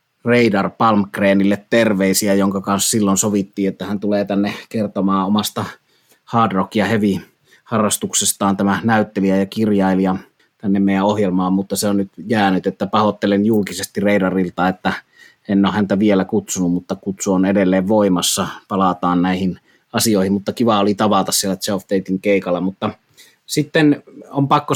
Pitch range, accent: 95-110 Hz, native